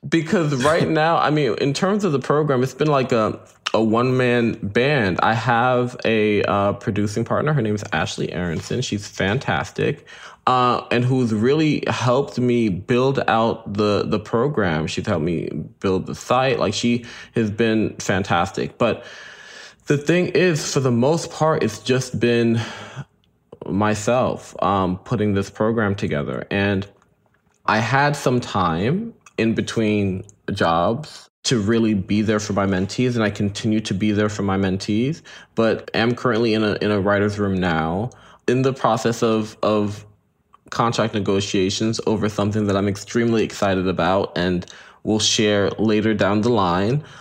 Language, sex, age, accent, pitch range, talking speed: English, male, 20-39, American, 105-125 Hz, 160 wpm